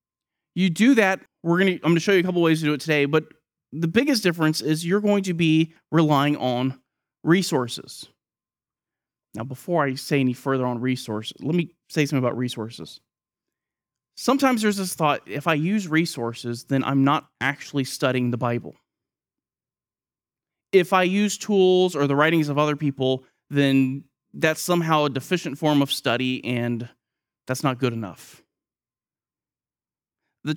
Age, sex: 30-49, male